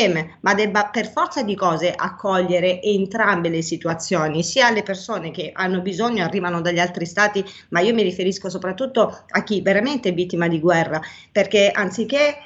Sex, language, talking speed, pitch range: female, Italian, 165 wpm, 185-225 Hz